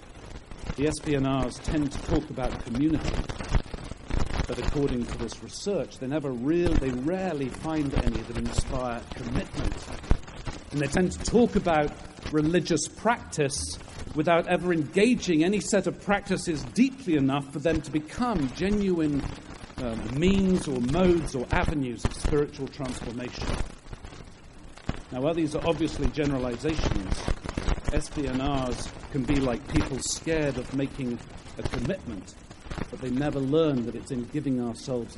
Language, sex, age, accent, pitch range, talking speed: English, male, 50-69, British, 115-160 Hz, 135 wpm